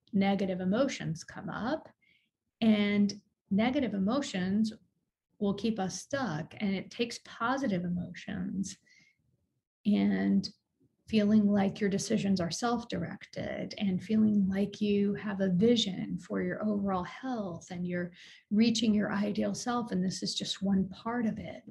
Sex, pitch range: female, 185-225 Hz